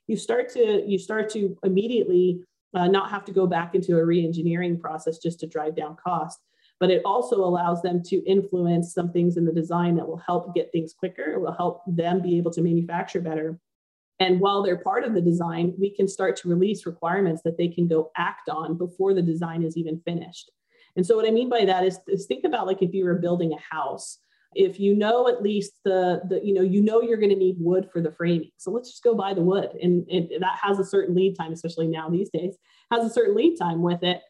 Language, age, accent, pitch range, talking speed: English, 30-49, American, 170-200 Hz, 240 wpm